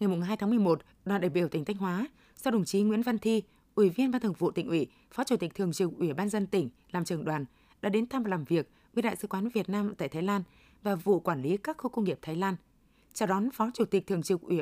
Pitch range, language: 180-225 Hz, Vietnamese